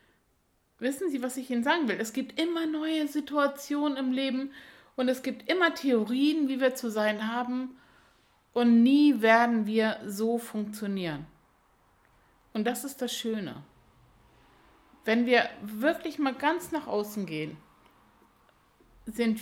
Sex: female